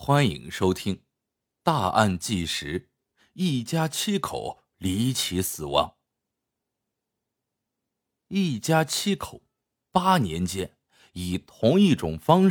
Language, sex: Chinese, male